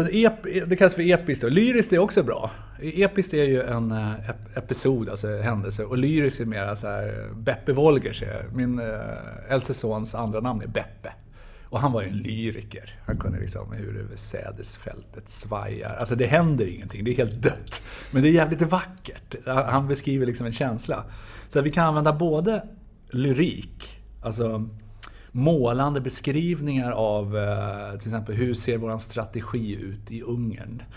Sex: male